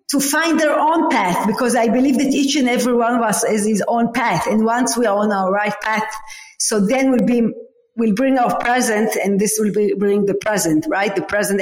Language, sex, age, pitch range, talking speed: English, female, 50-69, 215-295 Hz, 230 wpm